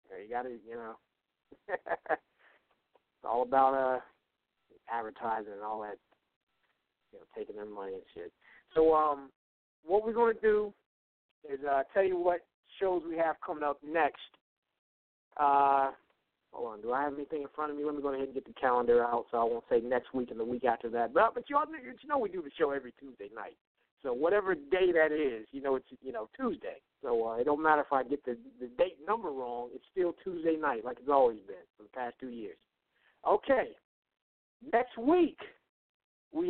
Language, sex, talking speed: English, male, 195 wpm